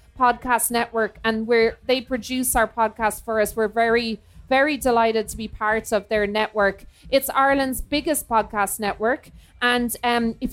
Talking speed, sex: 160 wpm, female